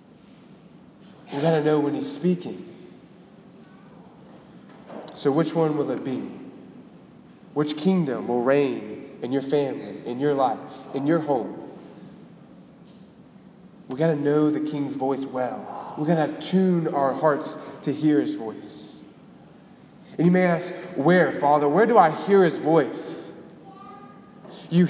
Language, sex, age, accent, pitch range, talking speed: English, male, 20-39, American, 145-175 Hz, 135 wpm